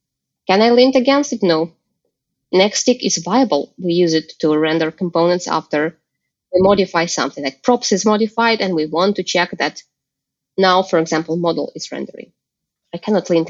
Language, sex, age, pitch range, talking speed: English, female, 20-39, 180-250 Hz, 175 wpm